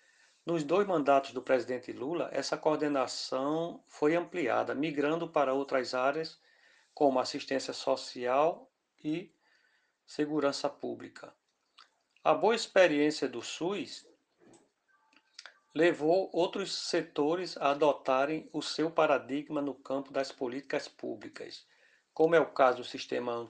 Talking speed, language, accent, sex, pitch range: 110 wpm, Portuguese, Brazilian, male, 130-160 Hz